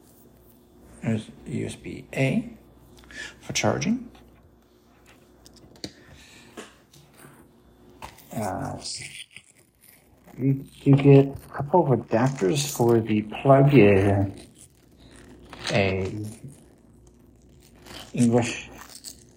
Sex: male